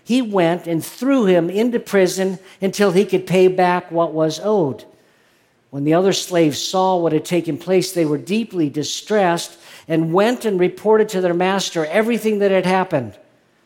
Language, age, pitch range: English, 50-69, 165-200 Hz